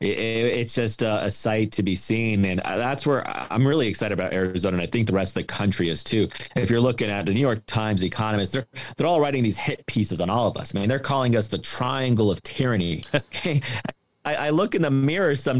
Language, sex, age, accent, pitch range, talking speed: English, male, 30-49, American, 105-135 Hz, 245 wpm